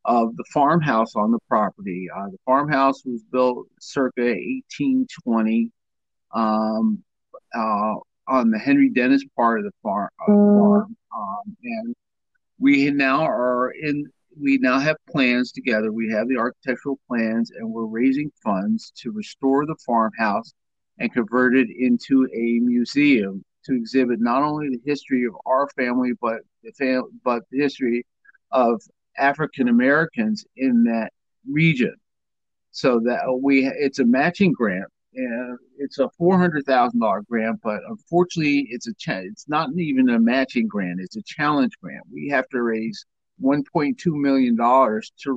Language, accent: English, American